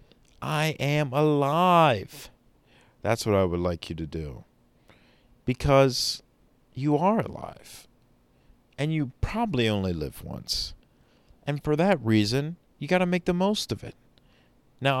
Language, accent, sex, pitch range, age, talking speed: English, American, male, 95-135 Hz, 40-59, 135 wpm